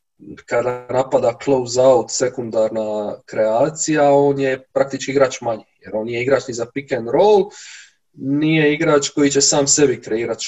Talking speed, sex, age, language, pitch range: 155 wpm, male, 20-39, Croatian, 125-170 Hz